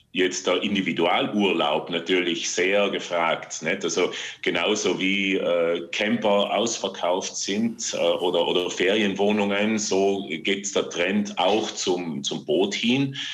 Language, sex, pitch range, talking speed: German, male, 90-110 Hz, 120 wpm